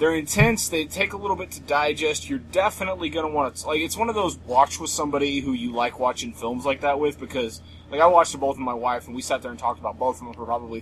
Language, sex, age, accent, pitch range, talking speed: English, male, 30-49, American, 115-150 Hz, 290 wpm